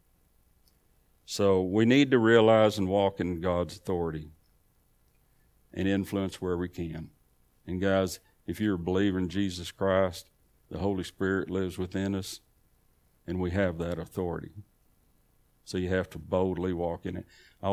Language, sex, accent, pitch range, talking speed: English, male, American, 90-110 Hz, 150 wpm